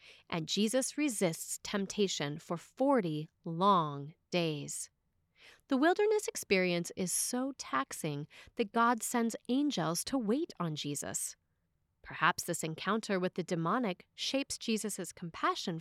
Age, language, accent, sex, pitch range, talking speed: 30-49, English, American, female, 165-250 Hz, 120 wpm